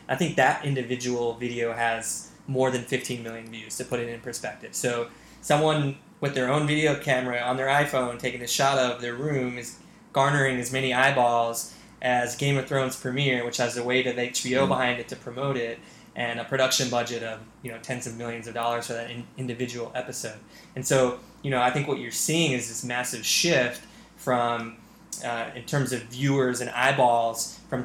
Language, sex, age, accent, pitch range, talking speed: English, male, 20-39, American, 120-130 Hz, 200 wpm